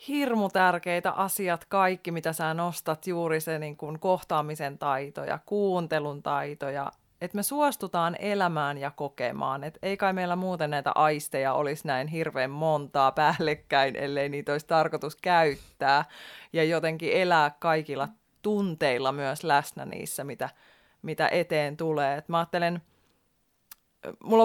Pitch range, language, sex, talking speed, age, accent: 150-185 Hz, Finnish, female, 125 wpm, 20-39, native